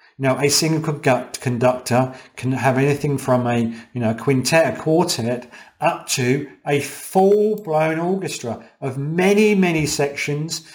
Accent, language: British, English